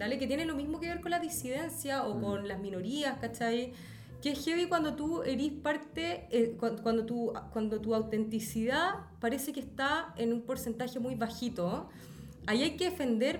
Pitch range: 215-285 Hz